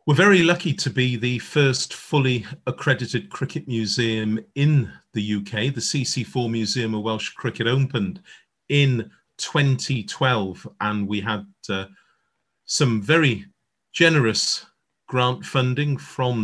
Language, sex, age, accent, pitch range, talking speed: English, male, 40-59, British, 115-140 Hz, 120 wpm